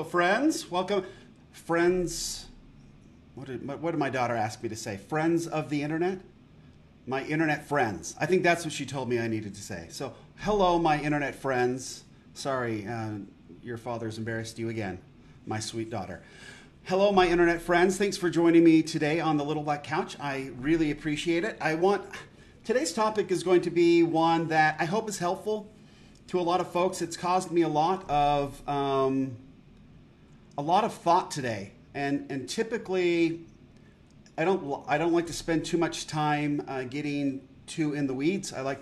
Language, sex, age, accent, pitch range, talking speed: English, male, 40-59, American, 130-170 Hz, 180 wpm